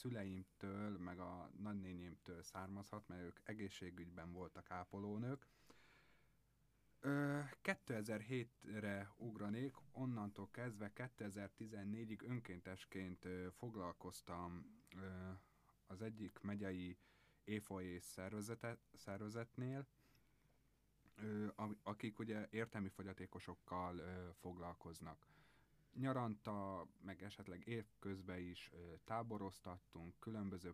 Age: 30-49